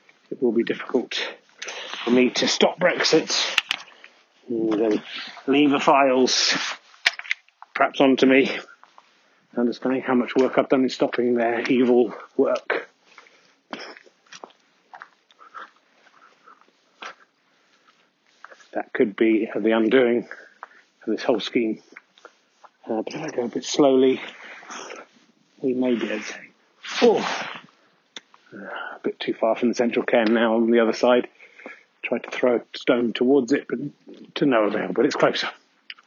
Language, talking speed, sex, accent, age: English, 130 wpm, male, British, 30-49